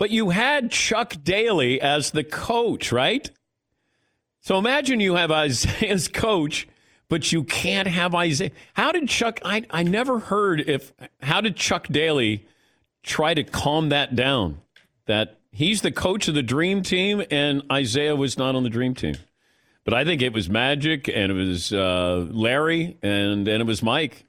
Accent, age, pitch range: American, 50-69, 115-180 Hz